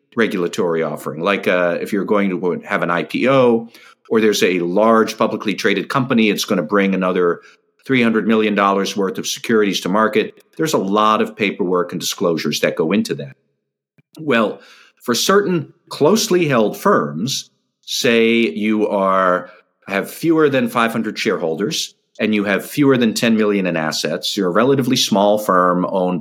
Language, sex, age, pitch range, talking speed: English, male, 50-69, 95-130 Hz, 160 wpm